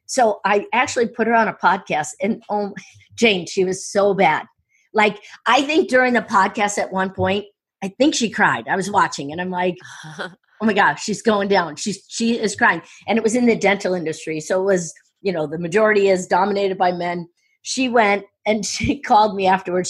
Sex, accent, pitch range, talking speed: female, American, 190-245 Hz, 210 wpm